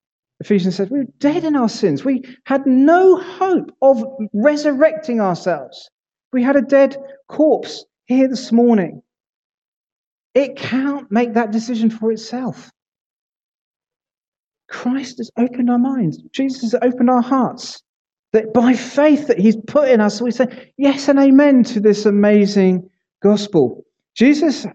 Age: 40-59